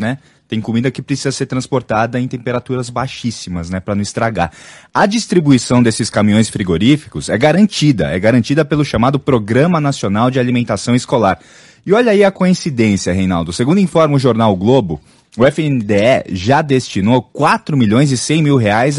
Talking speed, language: 160 wpm, English